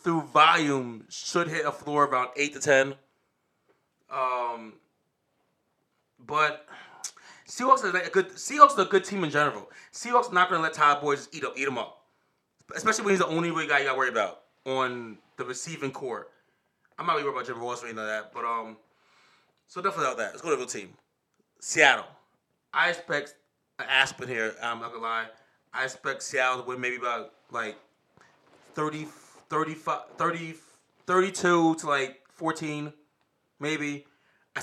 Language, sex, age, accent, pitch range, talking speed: English, male, 20-39, American, 135-165 Hz, 175 wpm